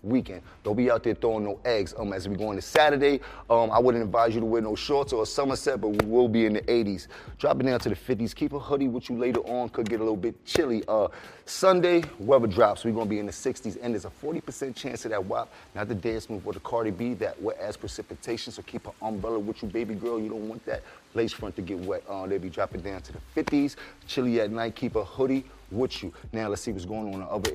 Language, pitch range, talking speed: English, 105-125 Hz, 265 wpm